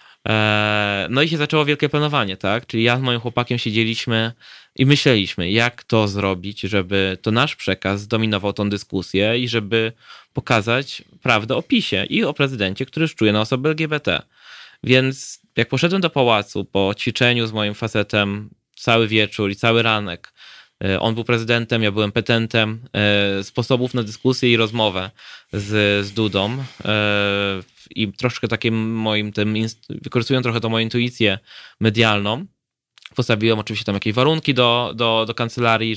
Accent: native